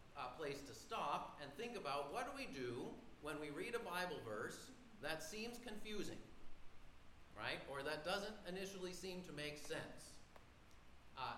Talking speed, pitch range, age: 160 wpm, 140-200 Hz, 40-59